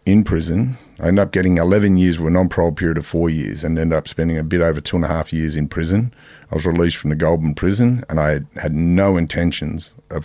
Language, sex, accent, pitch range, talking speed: English, male, Australian, 80-90 Hz, 250 wpm